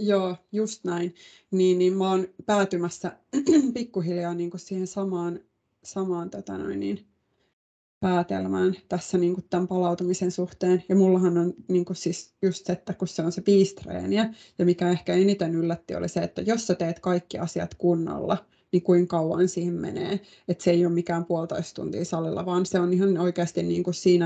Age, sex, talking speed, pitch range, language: 20-39, female, 170 wpm, 170-190 Hz, Finnish